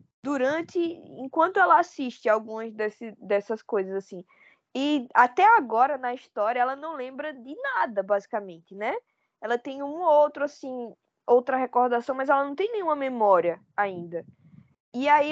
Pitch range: 225-310 Hz